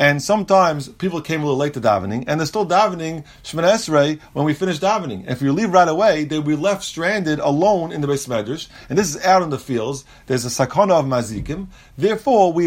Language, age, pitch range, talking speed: English, 30-49, 140-200 Hz, 220 wpm